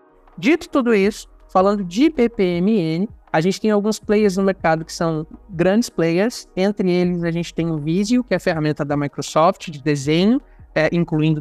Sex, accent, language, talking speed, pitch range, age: male, Brazilian, Portuguese, 180 wpm, 150-185 Hz, 20-39